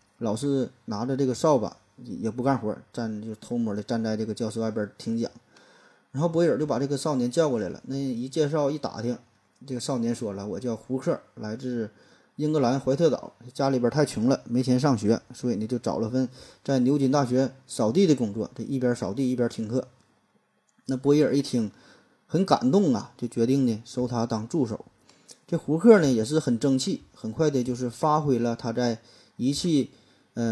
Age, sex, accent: 20-39, male, native